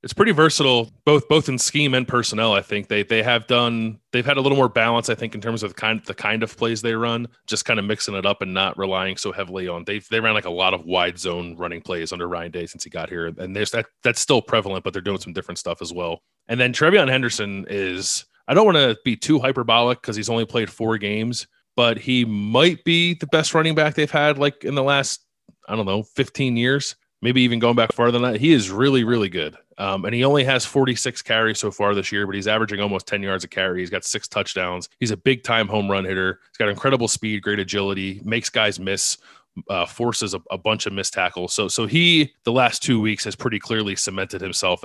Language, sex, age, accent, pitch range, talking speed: English, male, 30-49, American, 100-120 Hz, 250 wpm